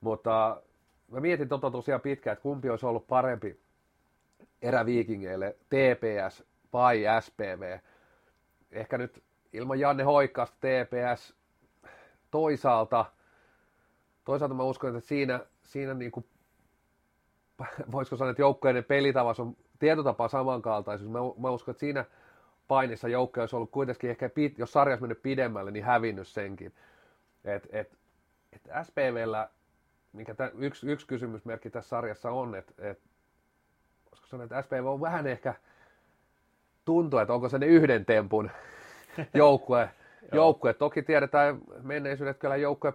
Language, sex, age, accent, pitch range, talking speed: Finnish, male, 30-49, native, 115-140 Hz, 125 wpm